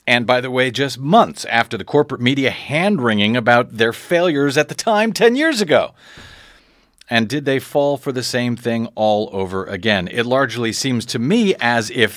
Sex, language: male, English